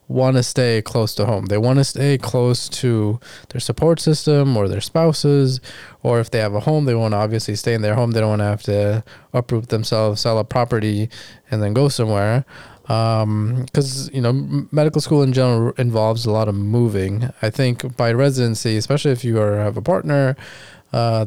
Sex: male